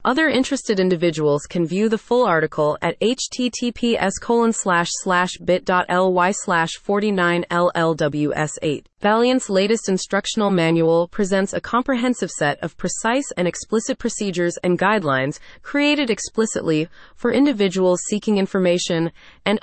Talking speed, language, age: 100 wpm, English, 30-49